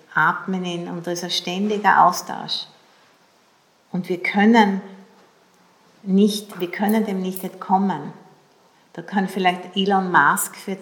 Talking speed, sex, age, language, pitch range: 130 wpm, female, 50-69, English, 170-205 Hz